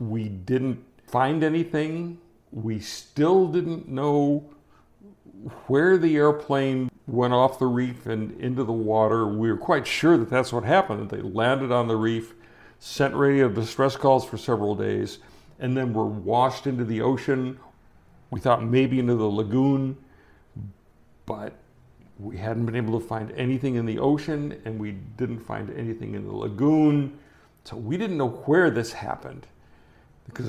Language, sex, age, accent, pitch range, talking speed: English, male, 60-79, American, 115-145 Hz, 155 wpm